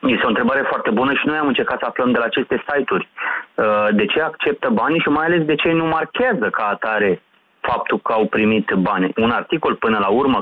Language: Romanian